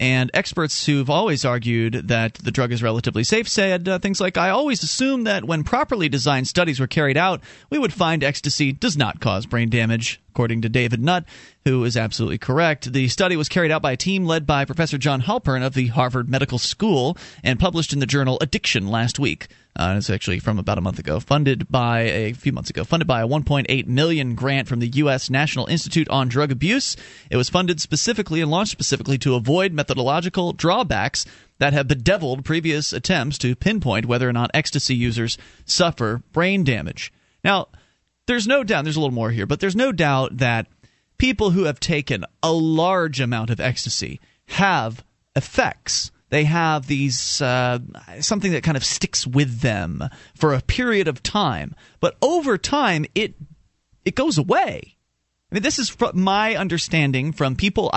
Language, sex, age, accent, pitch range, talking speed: English, male, 30-49, American, 125-165 Hz, 185 wpm